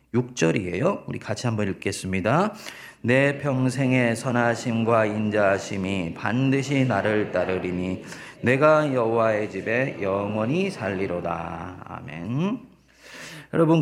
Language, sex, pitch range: Korean, male, 95-140 Hz